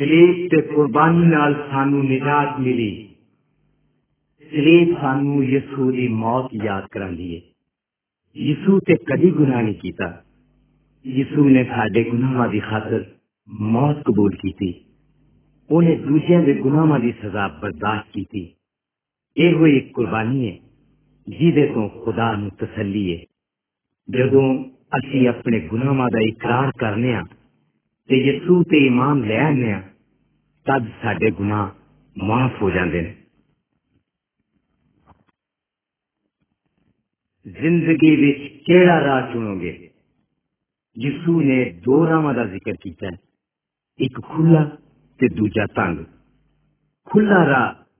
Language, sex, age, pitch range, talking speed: Hindi, male, 50-69, 105-145 Hz, 65 wpm